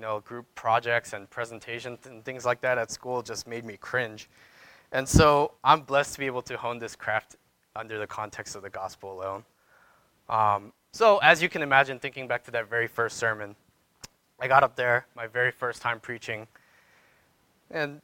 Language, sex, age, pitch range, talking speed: English, male, 20-39, 110-140 Hz, 185 wpm